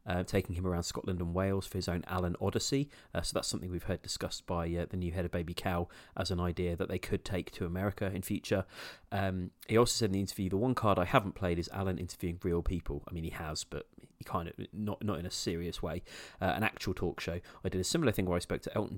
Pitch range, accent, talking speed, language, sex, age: 85-100 Hz, British, 270 wpm, English, male, 30-49